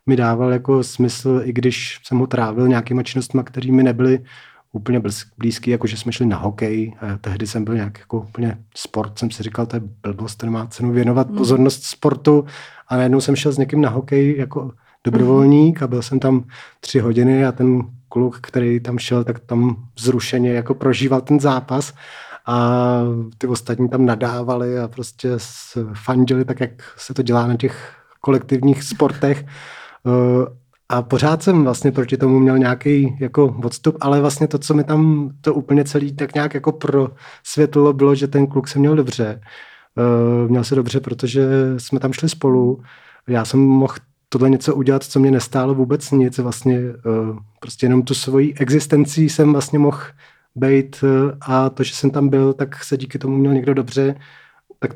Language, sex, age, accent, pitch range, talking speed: Czech, male, 30-49, native, 120-140 Hz, 180 wpm